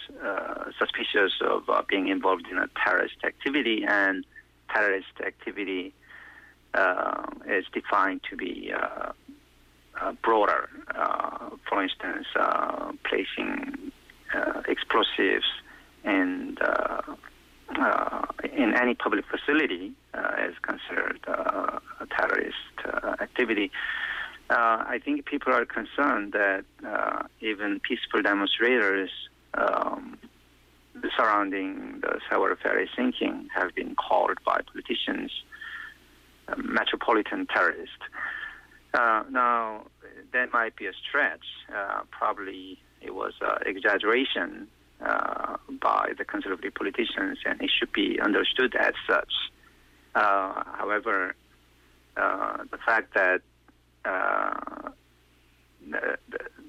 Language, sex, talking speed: English, male, 110 wpm